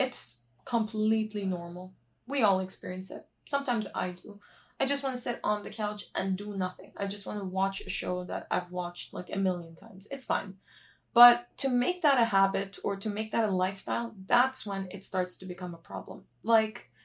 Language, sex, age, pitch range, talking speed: Turkish, female, 20-39, 185-225 Hz, 205 wpm